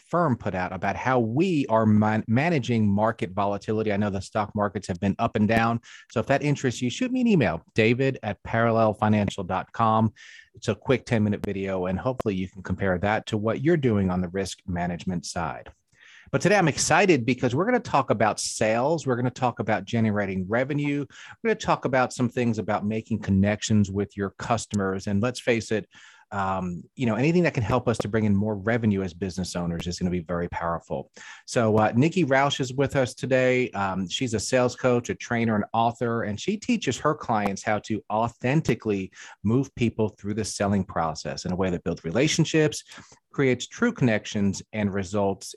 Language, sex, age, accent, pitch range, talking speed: English, male, 30-49, American, 100-125 Hz, 200 wpm